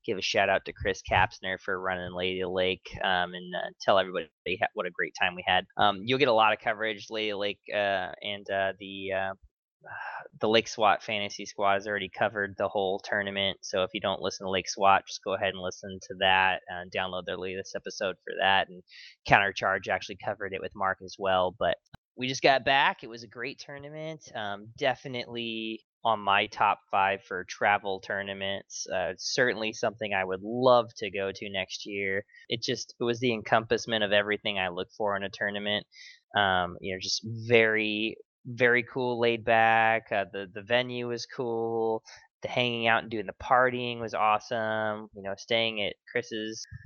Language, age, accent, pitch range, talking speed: English, 20-39, American, 100-115 Hz, 195 wpm